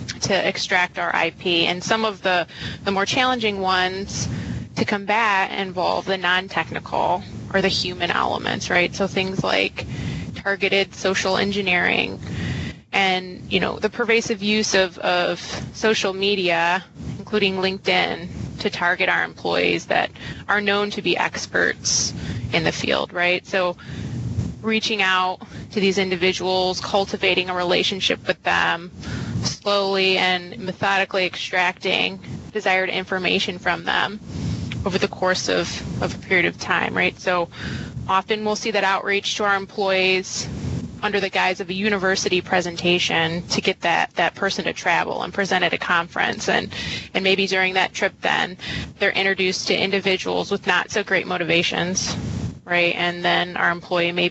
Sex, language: female, English